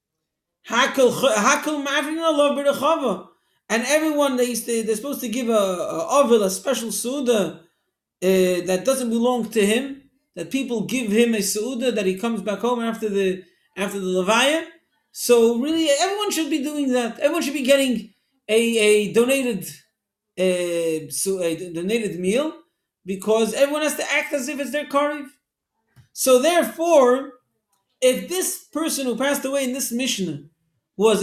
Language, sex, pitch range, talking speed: English, male, 215-290 Hz, 150 wpm